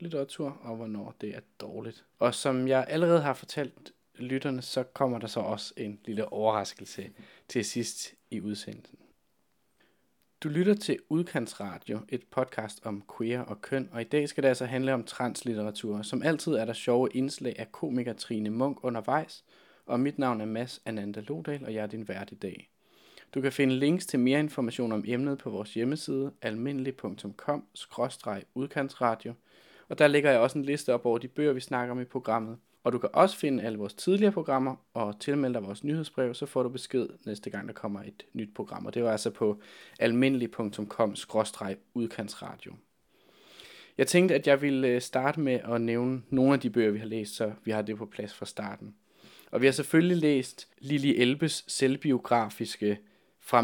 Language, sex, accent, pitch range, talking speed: Danish, male, native, 110-140 Hz, 180 wpm